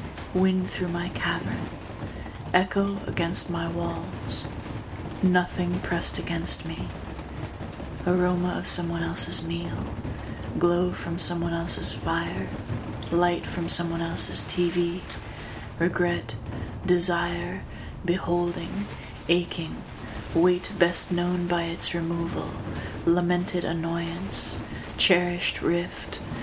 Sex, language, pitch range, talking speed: female, English, 110-180 Hz, 95 wpm